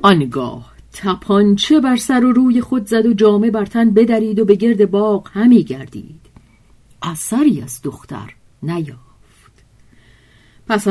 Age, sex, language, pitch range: 50-69, female, Persian, 150-235 Hz